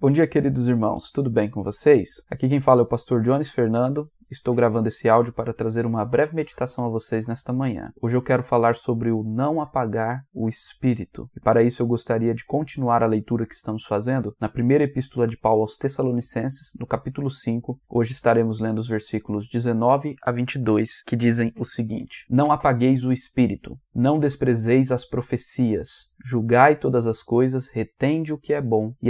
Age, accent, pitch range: 20-39, Brazilian, 115-140 Hz